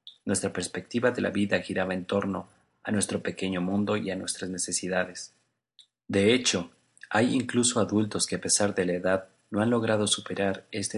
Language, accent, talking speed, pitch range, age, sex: Spanish, Mexican, 175 wpm, 90-105 Hz, 40-59, male